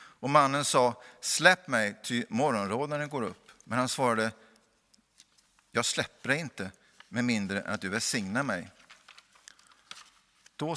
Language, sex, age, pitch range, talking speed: Swedish, male, 50-69, 105-135 Hz, 145 wpm